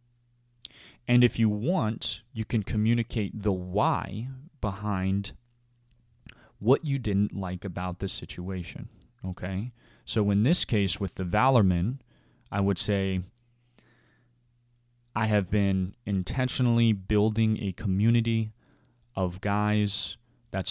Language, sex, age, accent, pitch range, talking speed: English, male, 20-39, American, 95-120 Hz, 110 wpm